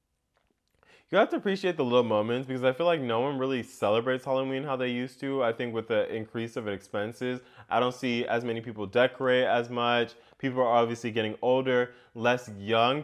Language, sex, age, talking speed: English, male, 20-39, 200 wpm